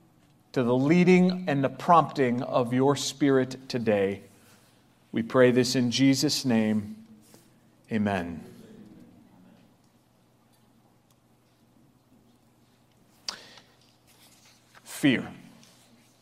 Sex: male